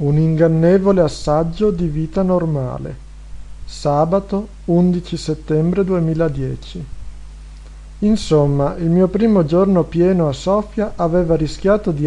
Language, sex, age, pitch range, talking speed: Italian, male, 50-69, 150-185 Hz, 105 wpm